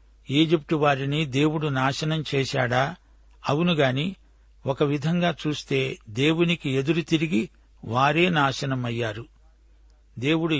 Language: Telugu